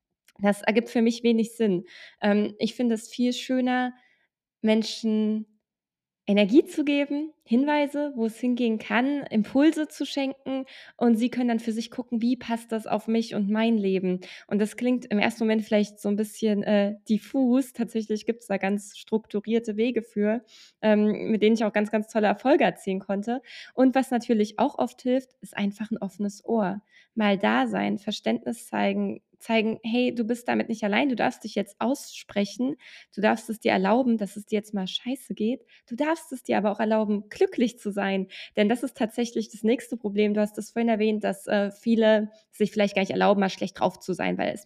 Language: German